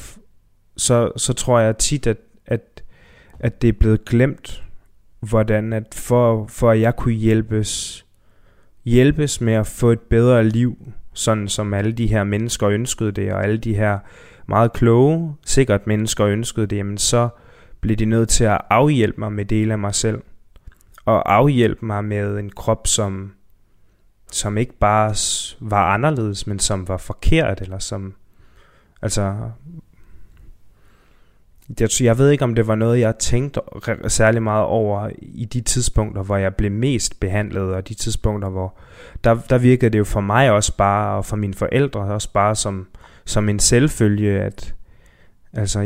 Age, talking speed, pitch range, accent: 20-39, 160 wpm, 100-115 Hz, native